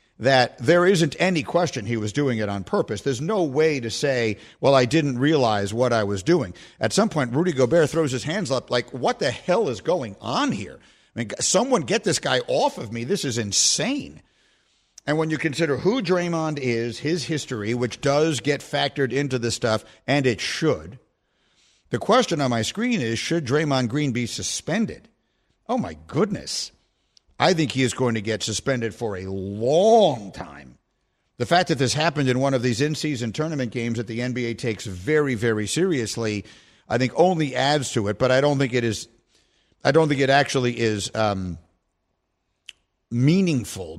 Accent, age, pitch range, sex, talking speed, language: American, 50-69, 110-150 Hz, male, 185 wpm, English